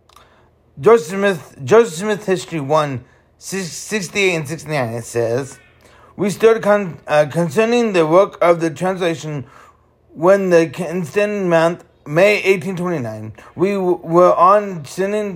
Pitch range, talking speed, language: 150-185 Hz, 130 wpm, English